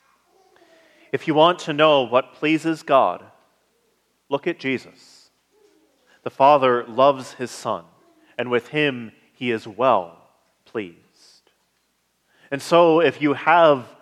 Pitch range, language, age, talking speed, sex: 120-150 Hz, English, 40-59, 120 wpm, male